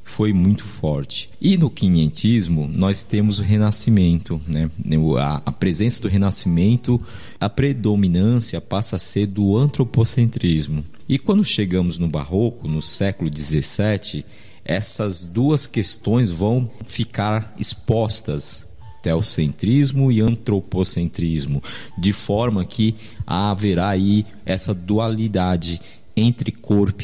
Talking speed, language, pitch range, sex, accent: 105 wpm, Portuguese, 85-110 Hz, male, Brazilian